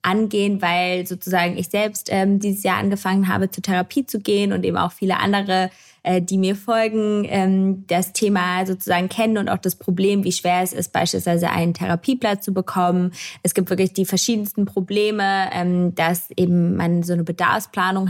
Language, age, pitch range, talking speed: German, 20-39, 175-200 Hz, 180 wpm